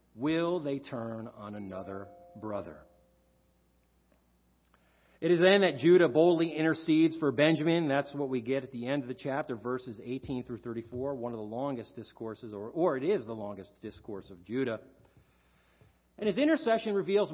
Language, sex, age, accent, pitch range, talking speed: English, male, 50-69, American, 105-155 Hz, 165 wpm